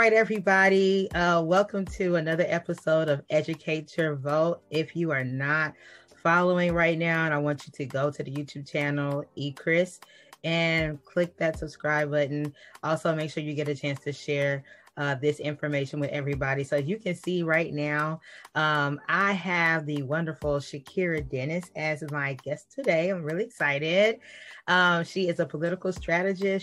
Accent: American